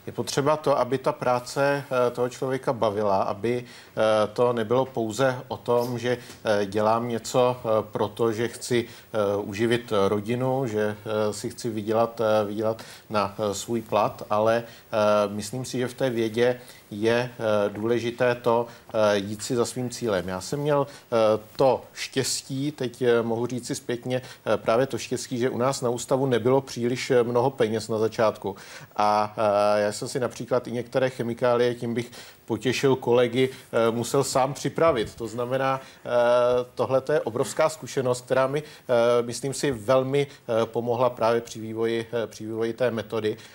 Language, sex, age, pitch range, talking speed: Czech, male, 40-59, 110-130 Hz, 145 wpm